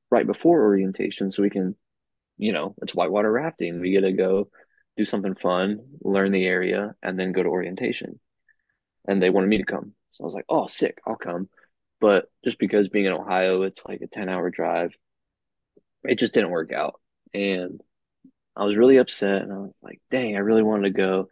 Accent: American